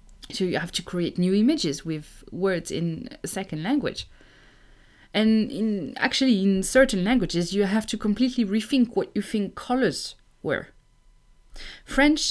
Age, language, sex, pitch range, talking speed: 30-49, English, female, 165-220 Hz, 145 wpm